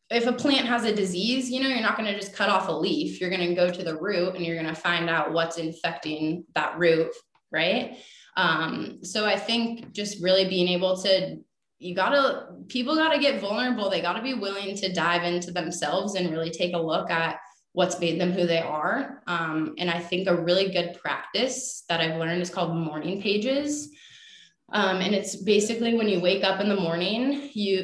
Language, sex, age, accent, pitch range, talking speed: English, female, 20-39, American, 175-220 Hz, 210 wpm